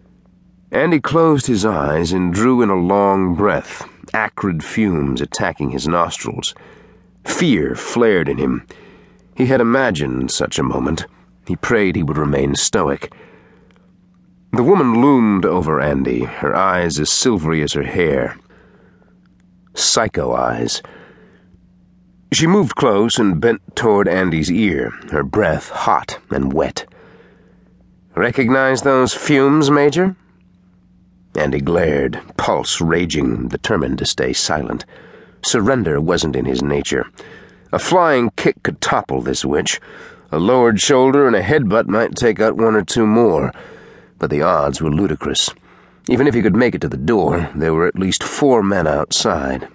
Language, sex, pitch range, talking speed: English, male, 75-125 Hz, 140 wpm